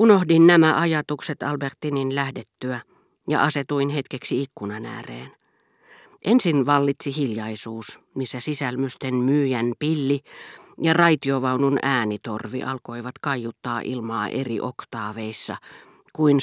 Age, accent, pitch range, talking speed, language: 50-69, native, 125-155 Hz, 95 wpm, Finnish